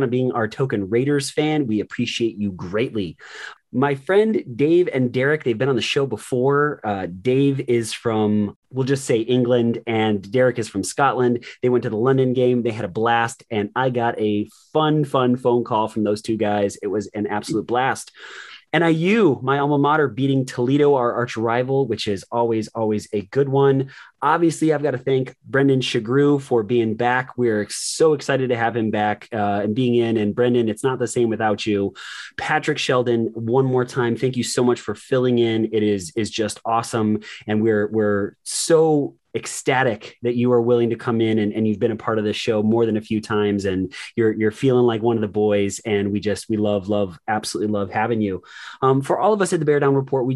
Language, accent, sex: English, American, male